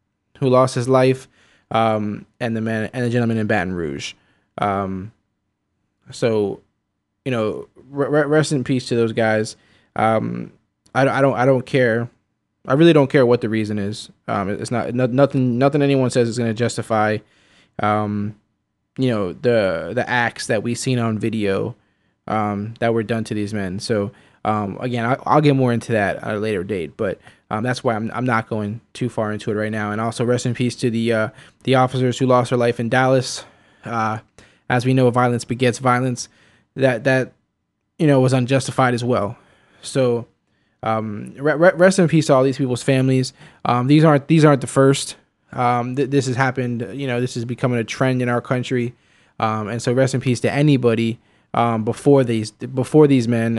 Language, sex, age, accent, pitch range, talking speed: English, male, 20-39, American, 110-130 Hz, 190 wpm